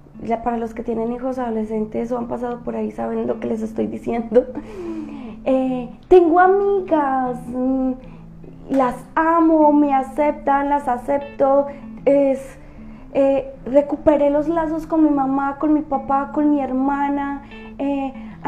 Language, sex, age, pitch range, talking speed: Spanish, female, 20-39, 245-295 Hz, 135 wpm